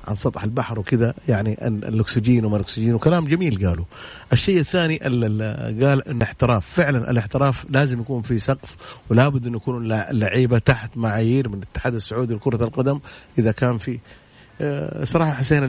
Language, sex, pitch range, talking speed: Arabic, male, 105-125 Hz, 155 wpm